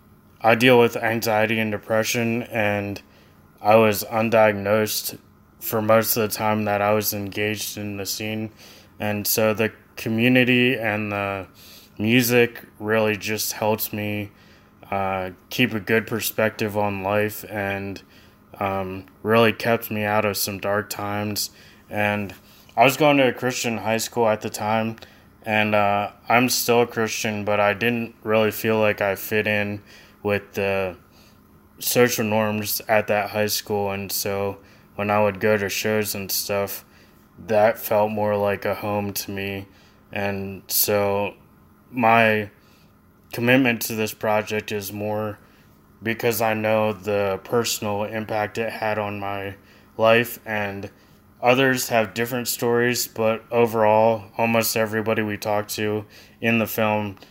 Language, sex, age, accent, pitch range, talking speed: English, male, 20-39, American, 100-110 Hz, 145 wpm